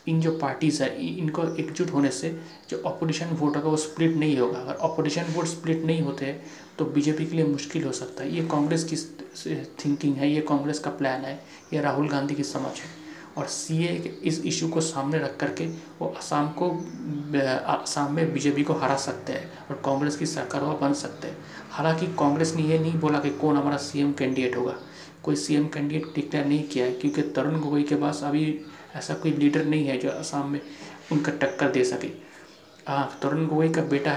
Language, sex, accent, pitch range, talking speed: Hindi, male, native, 140-160 Hz, 200 wpm